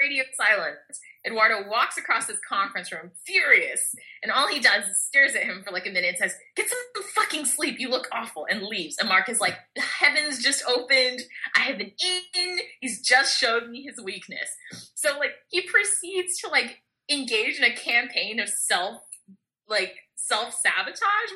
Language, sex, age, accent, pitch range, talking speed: English, female, 20-39, American, 210-330 Hz, 175 wpm